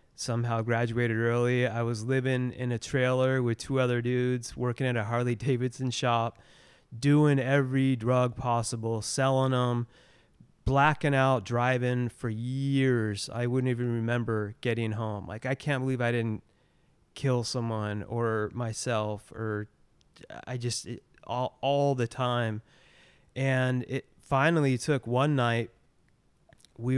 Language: English